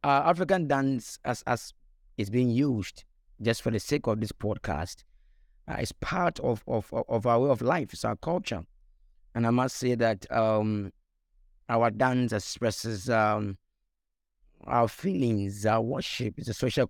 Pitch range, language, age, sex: 105-125 Hz, English, 30-49, male